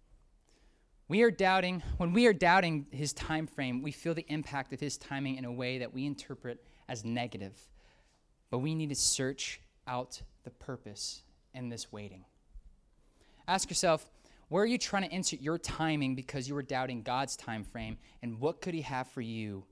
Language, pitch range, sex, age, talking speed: English, 125-165 Hz, male, 20-39, 185 wpm